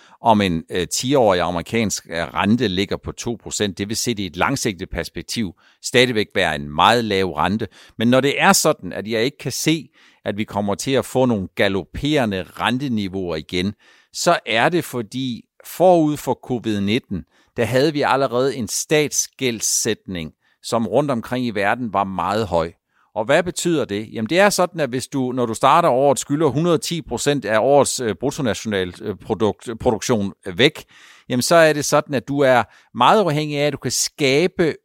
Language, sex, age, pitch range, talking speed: Danish, male, 50-69, 110-150 Hz, 170 wpm